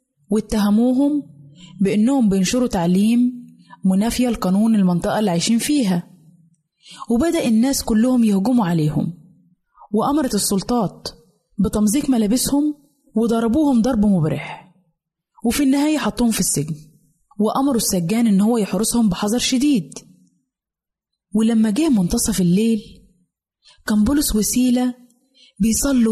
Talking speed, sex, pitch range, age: 95 wpm, female, 190-250 Hz, 20-39